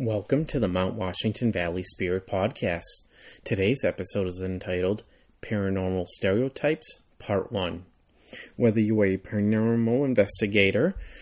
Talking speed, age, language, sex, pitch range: 120 wpm, 30-49, English, male, 100-125 Hz